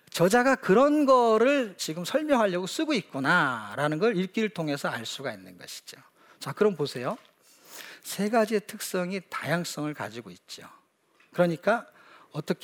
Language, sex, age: Korean, male, 40-59